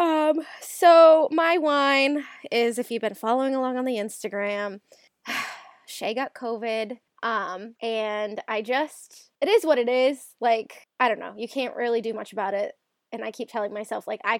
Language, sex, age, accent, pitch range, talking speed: English, female, 20-39, American, 215-260 Hz, 180 wpm